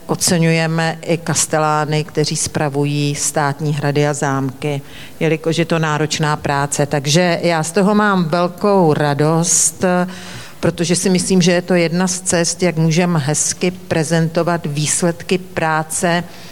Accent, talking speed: native, 125 wpm